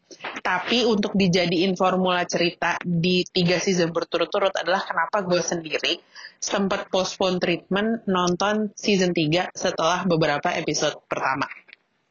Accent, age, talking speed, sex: native, 30-49, 115 wpm, female